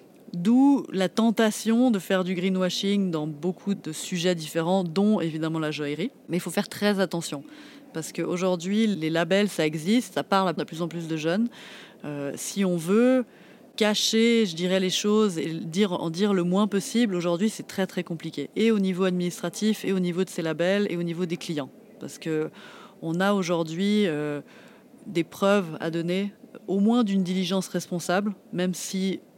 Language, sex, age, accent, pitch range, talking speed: French, female, 30-49, French, 170-205 Hz, 180 wpm